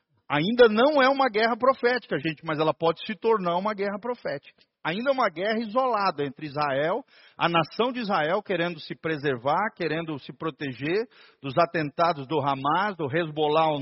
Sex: male